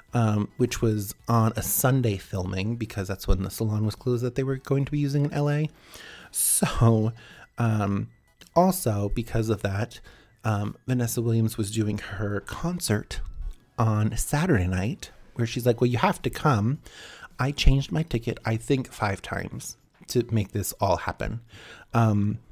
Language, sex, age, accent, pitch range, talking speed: English, male, 30-49, American, 105-125 Hz, 165 wpm